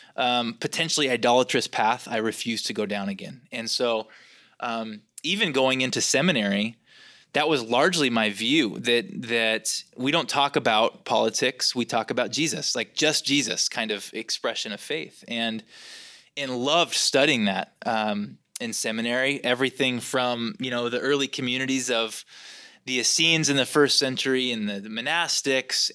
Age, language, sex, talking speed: 20-39, English, male, 155 wpm